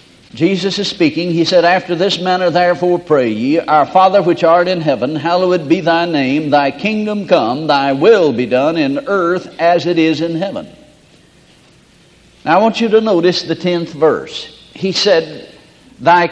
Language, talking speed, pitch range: English, 175 wpm, 165-230 Hz